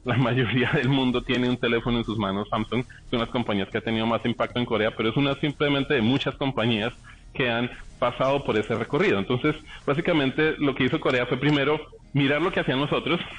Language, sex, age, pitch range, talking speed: Spanish, male, 30-49, 115-140 Hz, 220 wpm